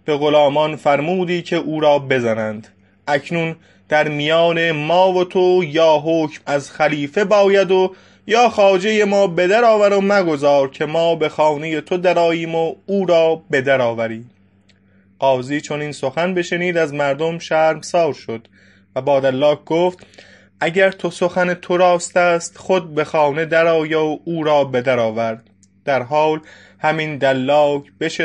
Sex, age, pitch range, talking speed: male, 20-39, 130-175 Hz, 155 wpm